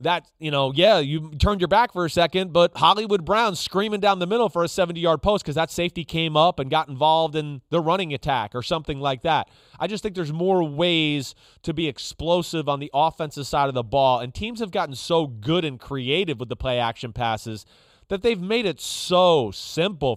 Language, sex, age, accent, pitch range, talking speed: English, male, 30-49, American, 140-180 Hz, 220 wpm